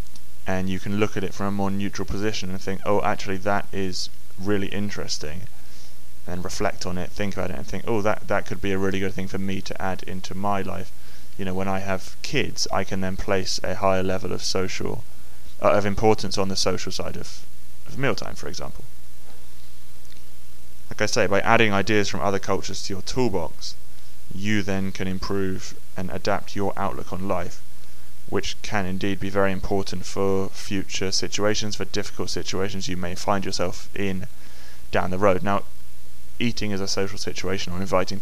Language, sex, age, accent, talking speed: English, male, 20-39, British, 190 wpm